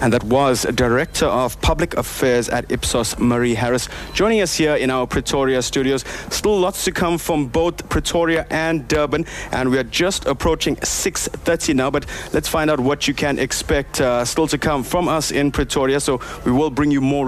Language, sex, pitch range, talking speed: English, male, 125-150 Hz, 195 wpm